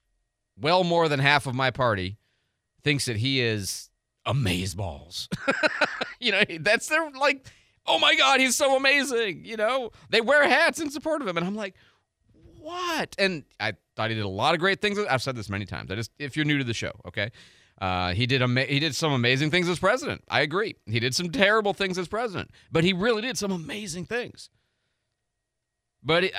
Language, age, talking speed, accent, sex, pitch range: English, 30-49, 200 wpm, American, male, 110-180 Hz